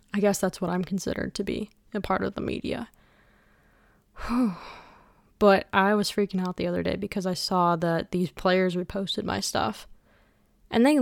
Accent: American